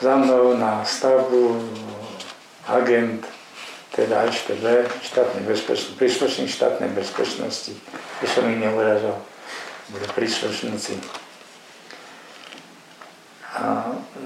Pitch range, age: 120-135 Hz, 50-69